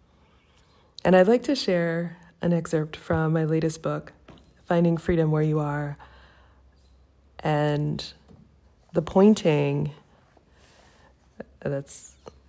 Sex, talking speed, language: female, 95 wpm, English